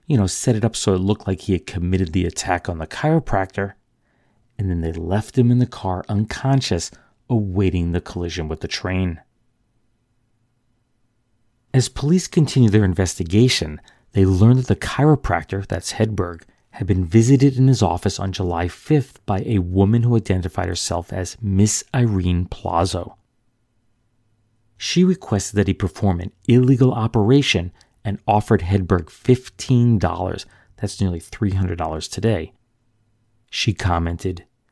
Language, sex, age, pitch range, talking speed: English, male, 40-59, 90-120 Hz, 145 wpm